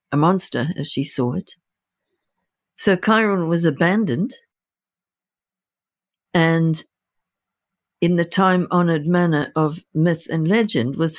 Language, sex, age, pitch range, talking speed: English, female, 60-79, 150-190 Hz, 105 wpm